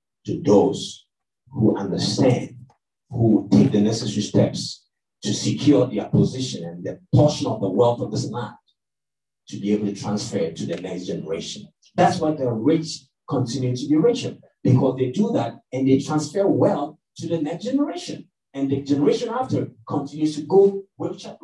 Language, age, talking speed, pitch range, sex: English, 50-69, 165 wpm, 135-190 Hz, male